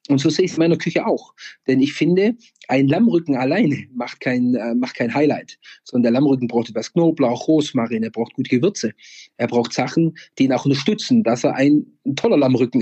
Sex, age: male, 40-59